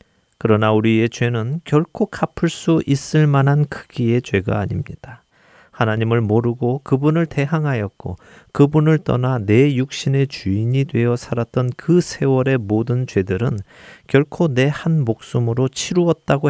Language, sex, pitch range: Korean, male, 105-140 Hz